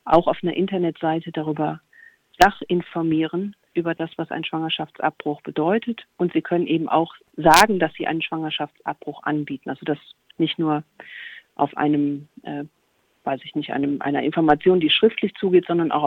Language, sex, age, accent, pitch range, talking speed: German, female, 40-59, German, 165-190 Hz, 155 wpm